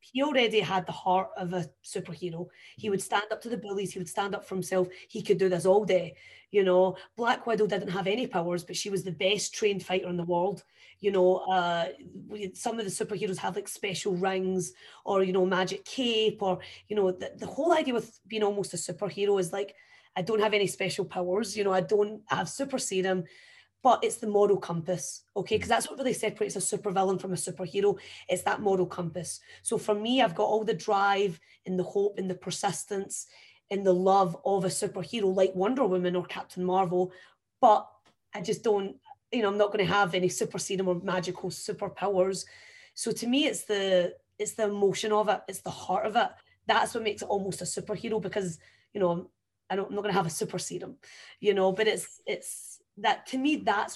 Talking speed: 215 wpm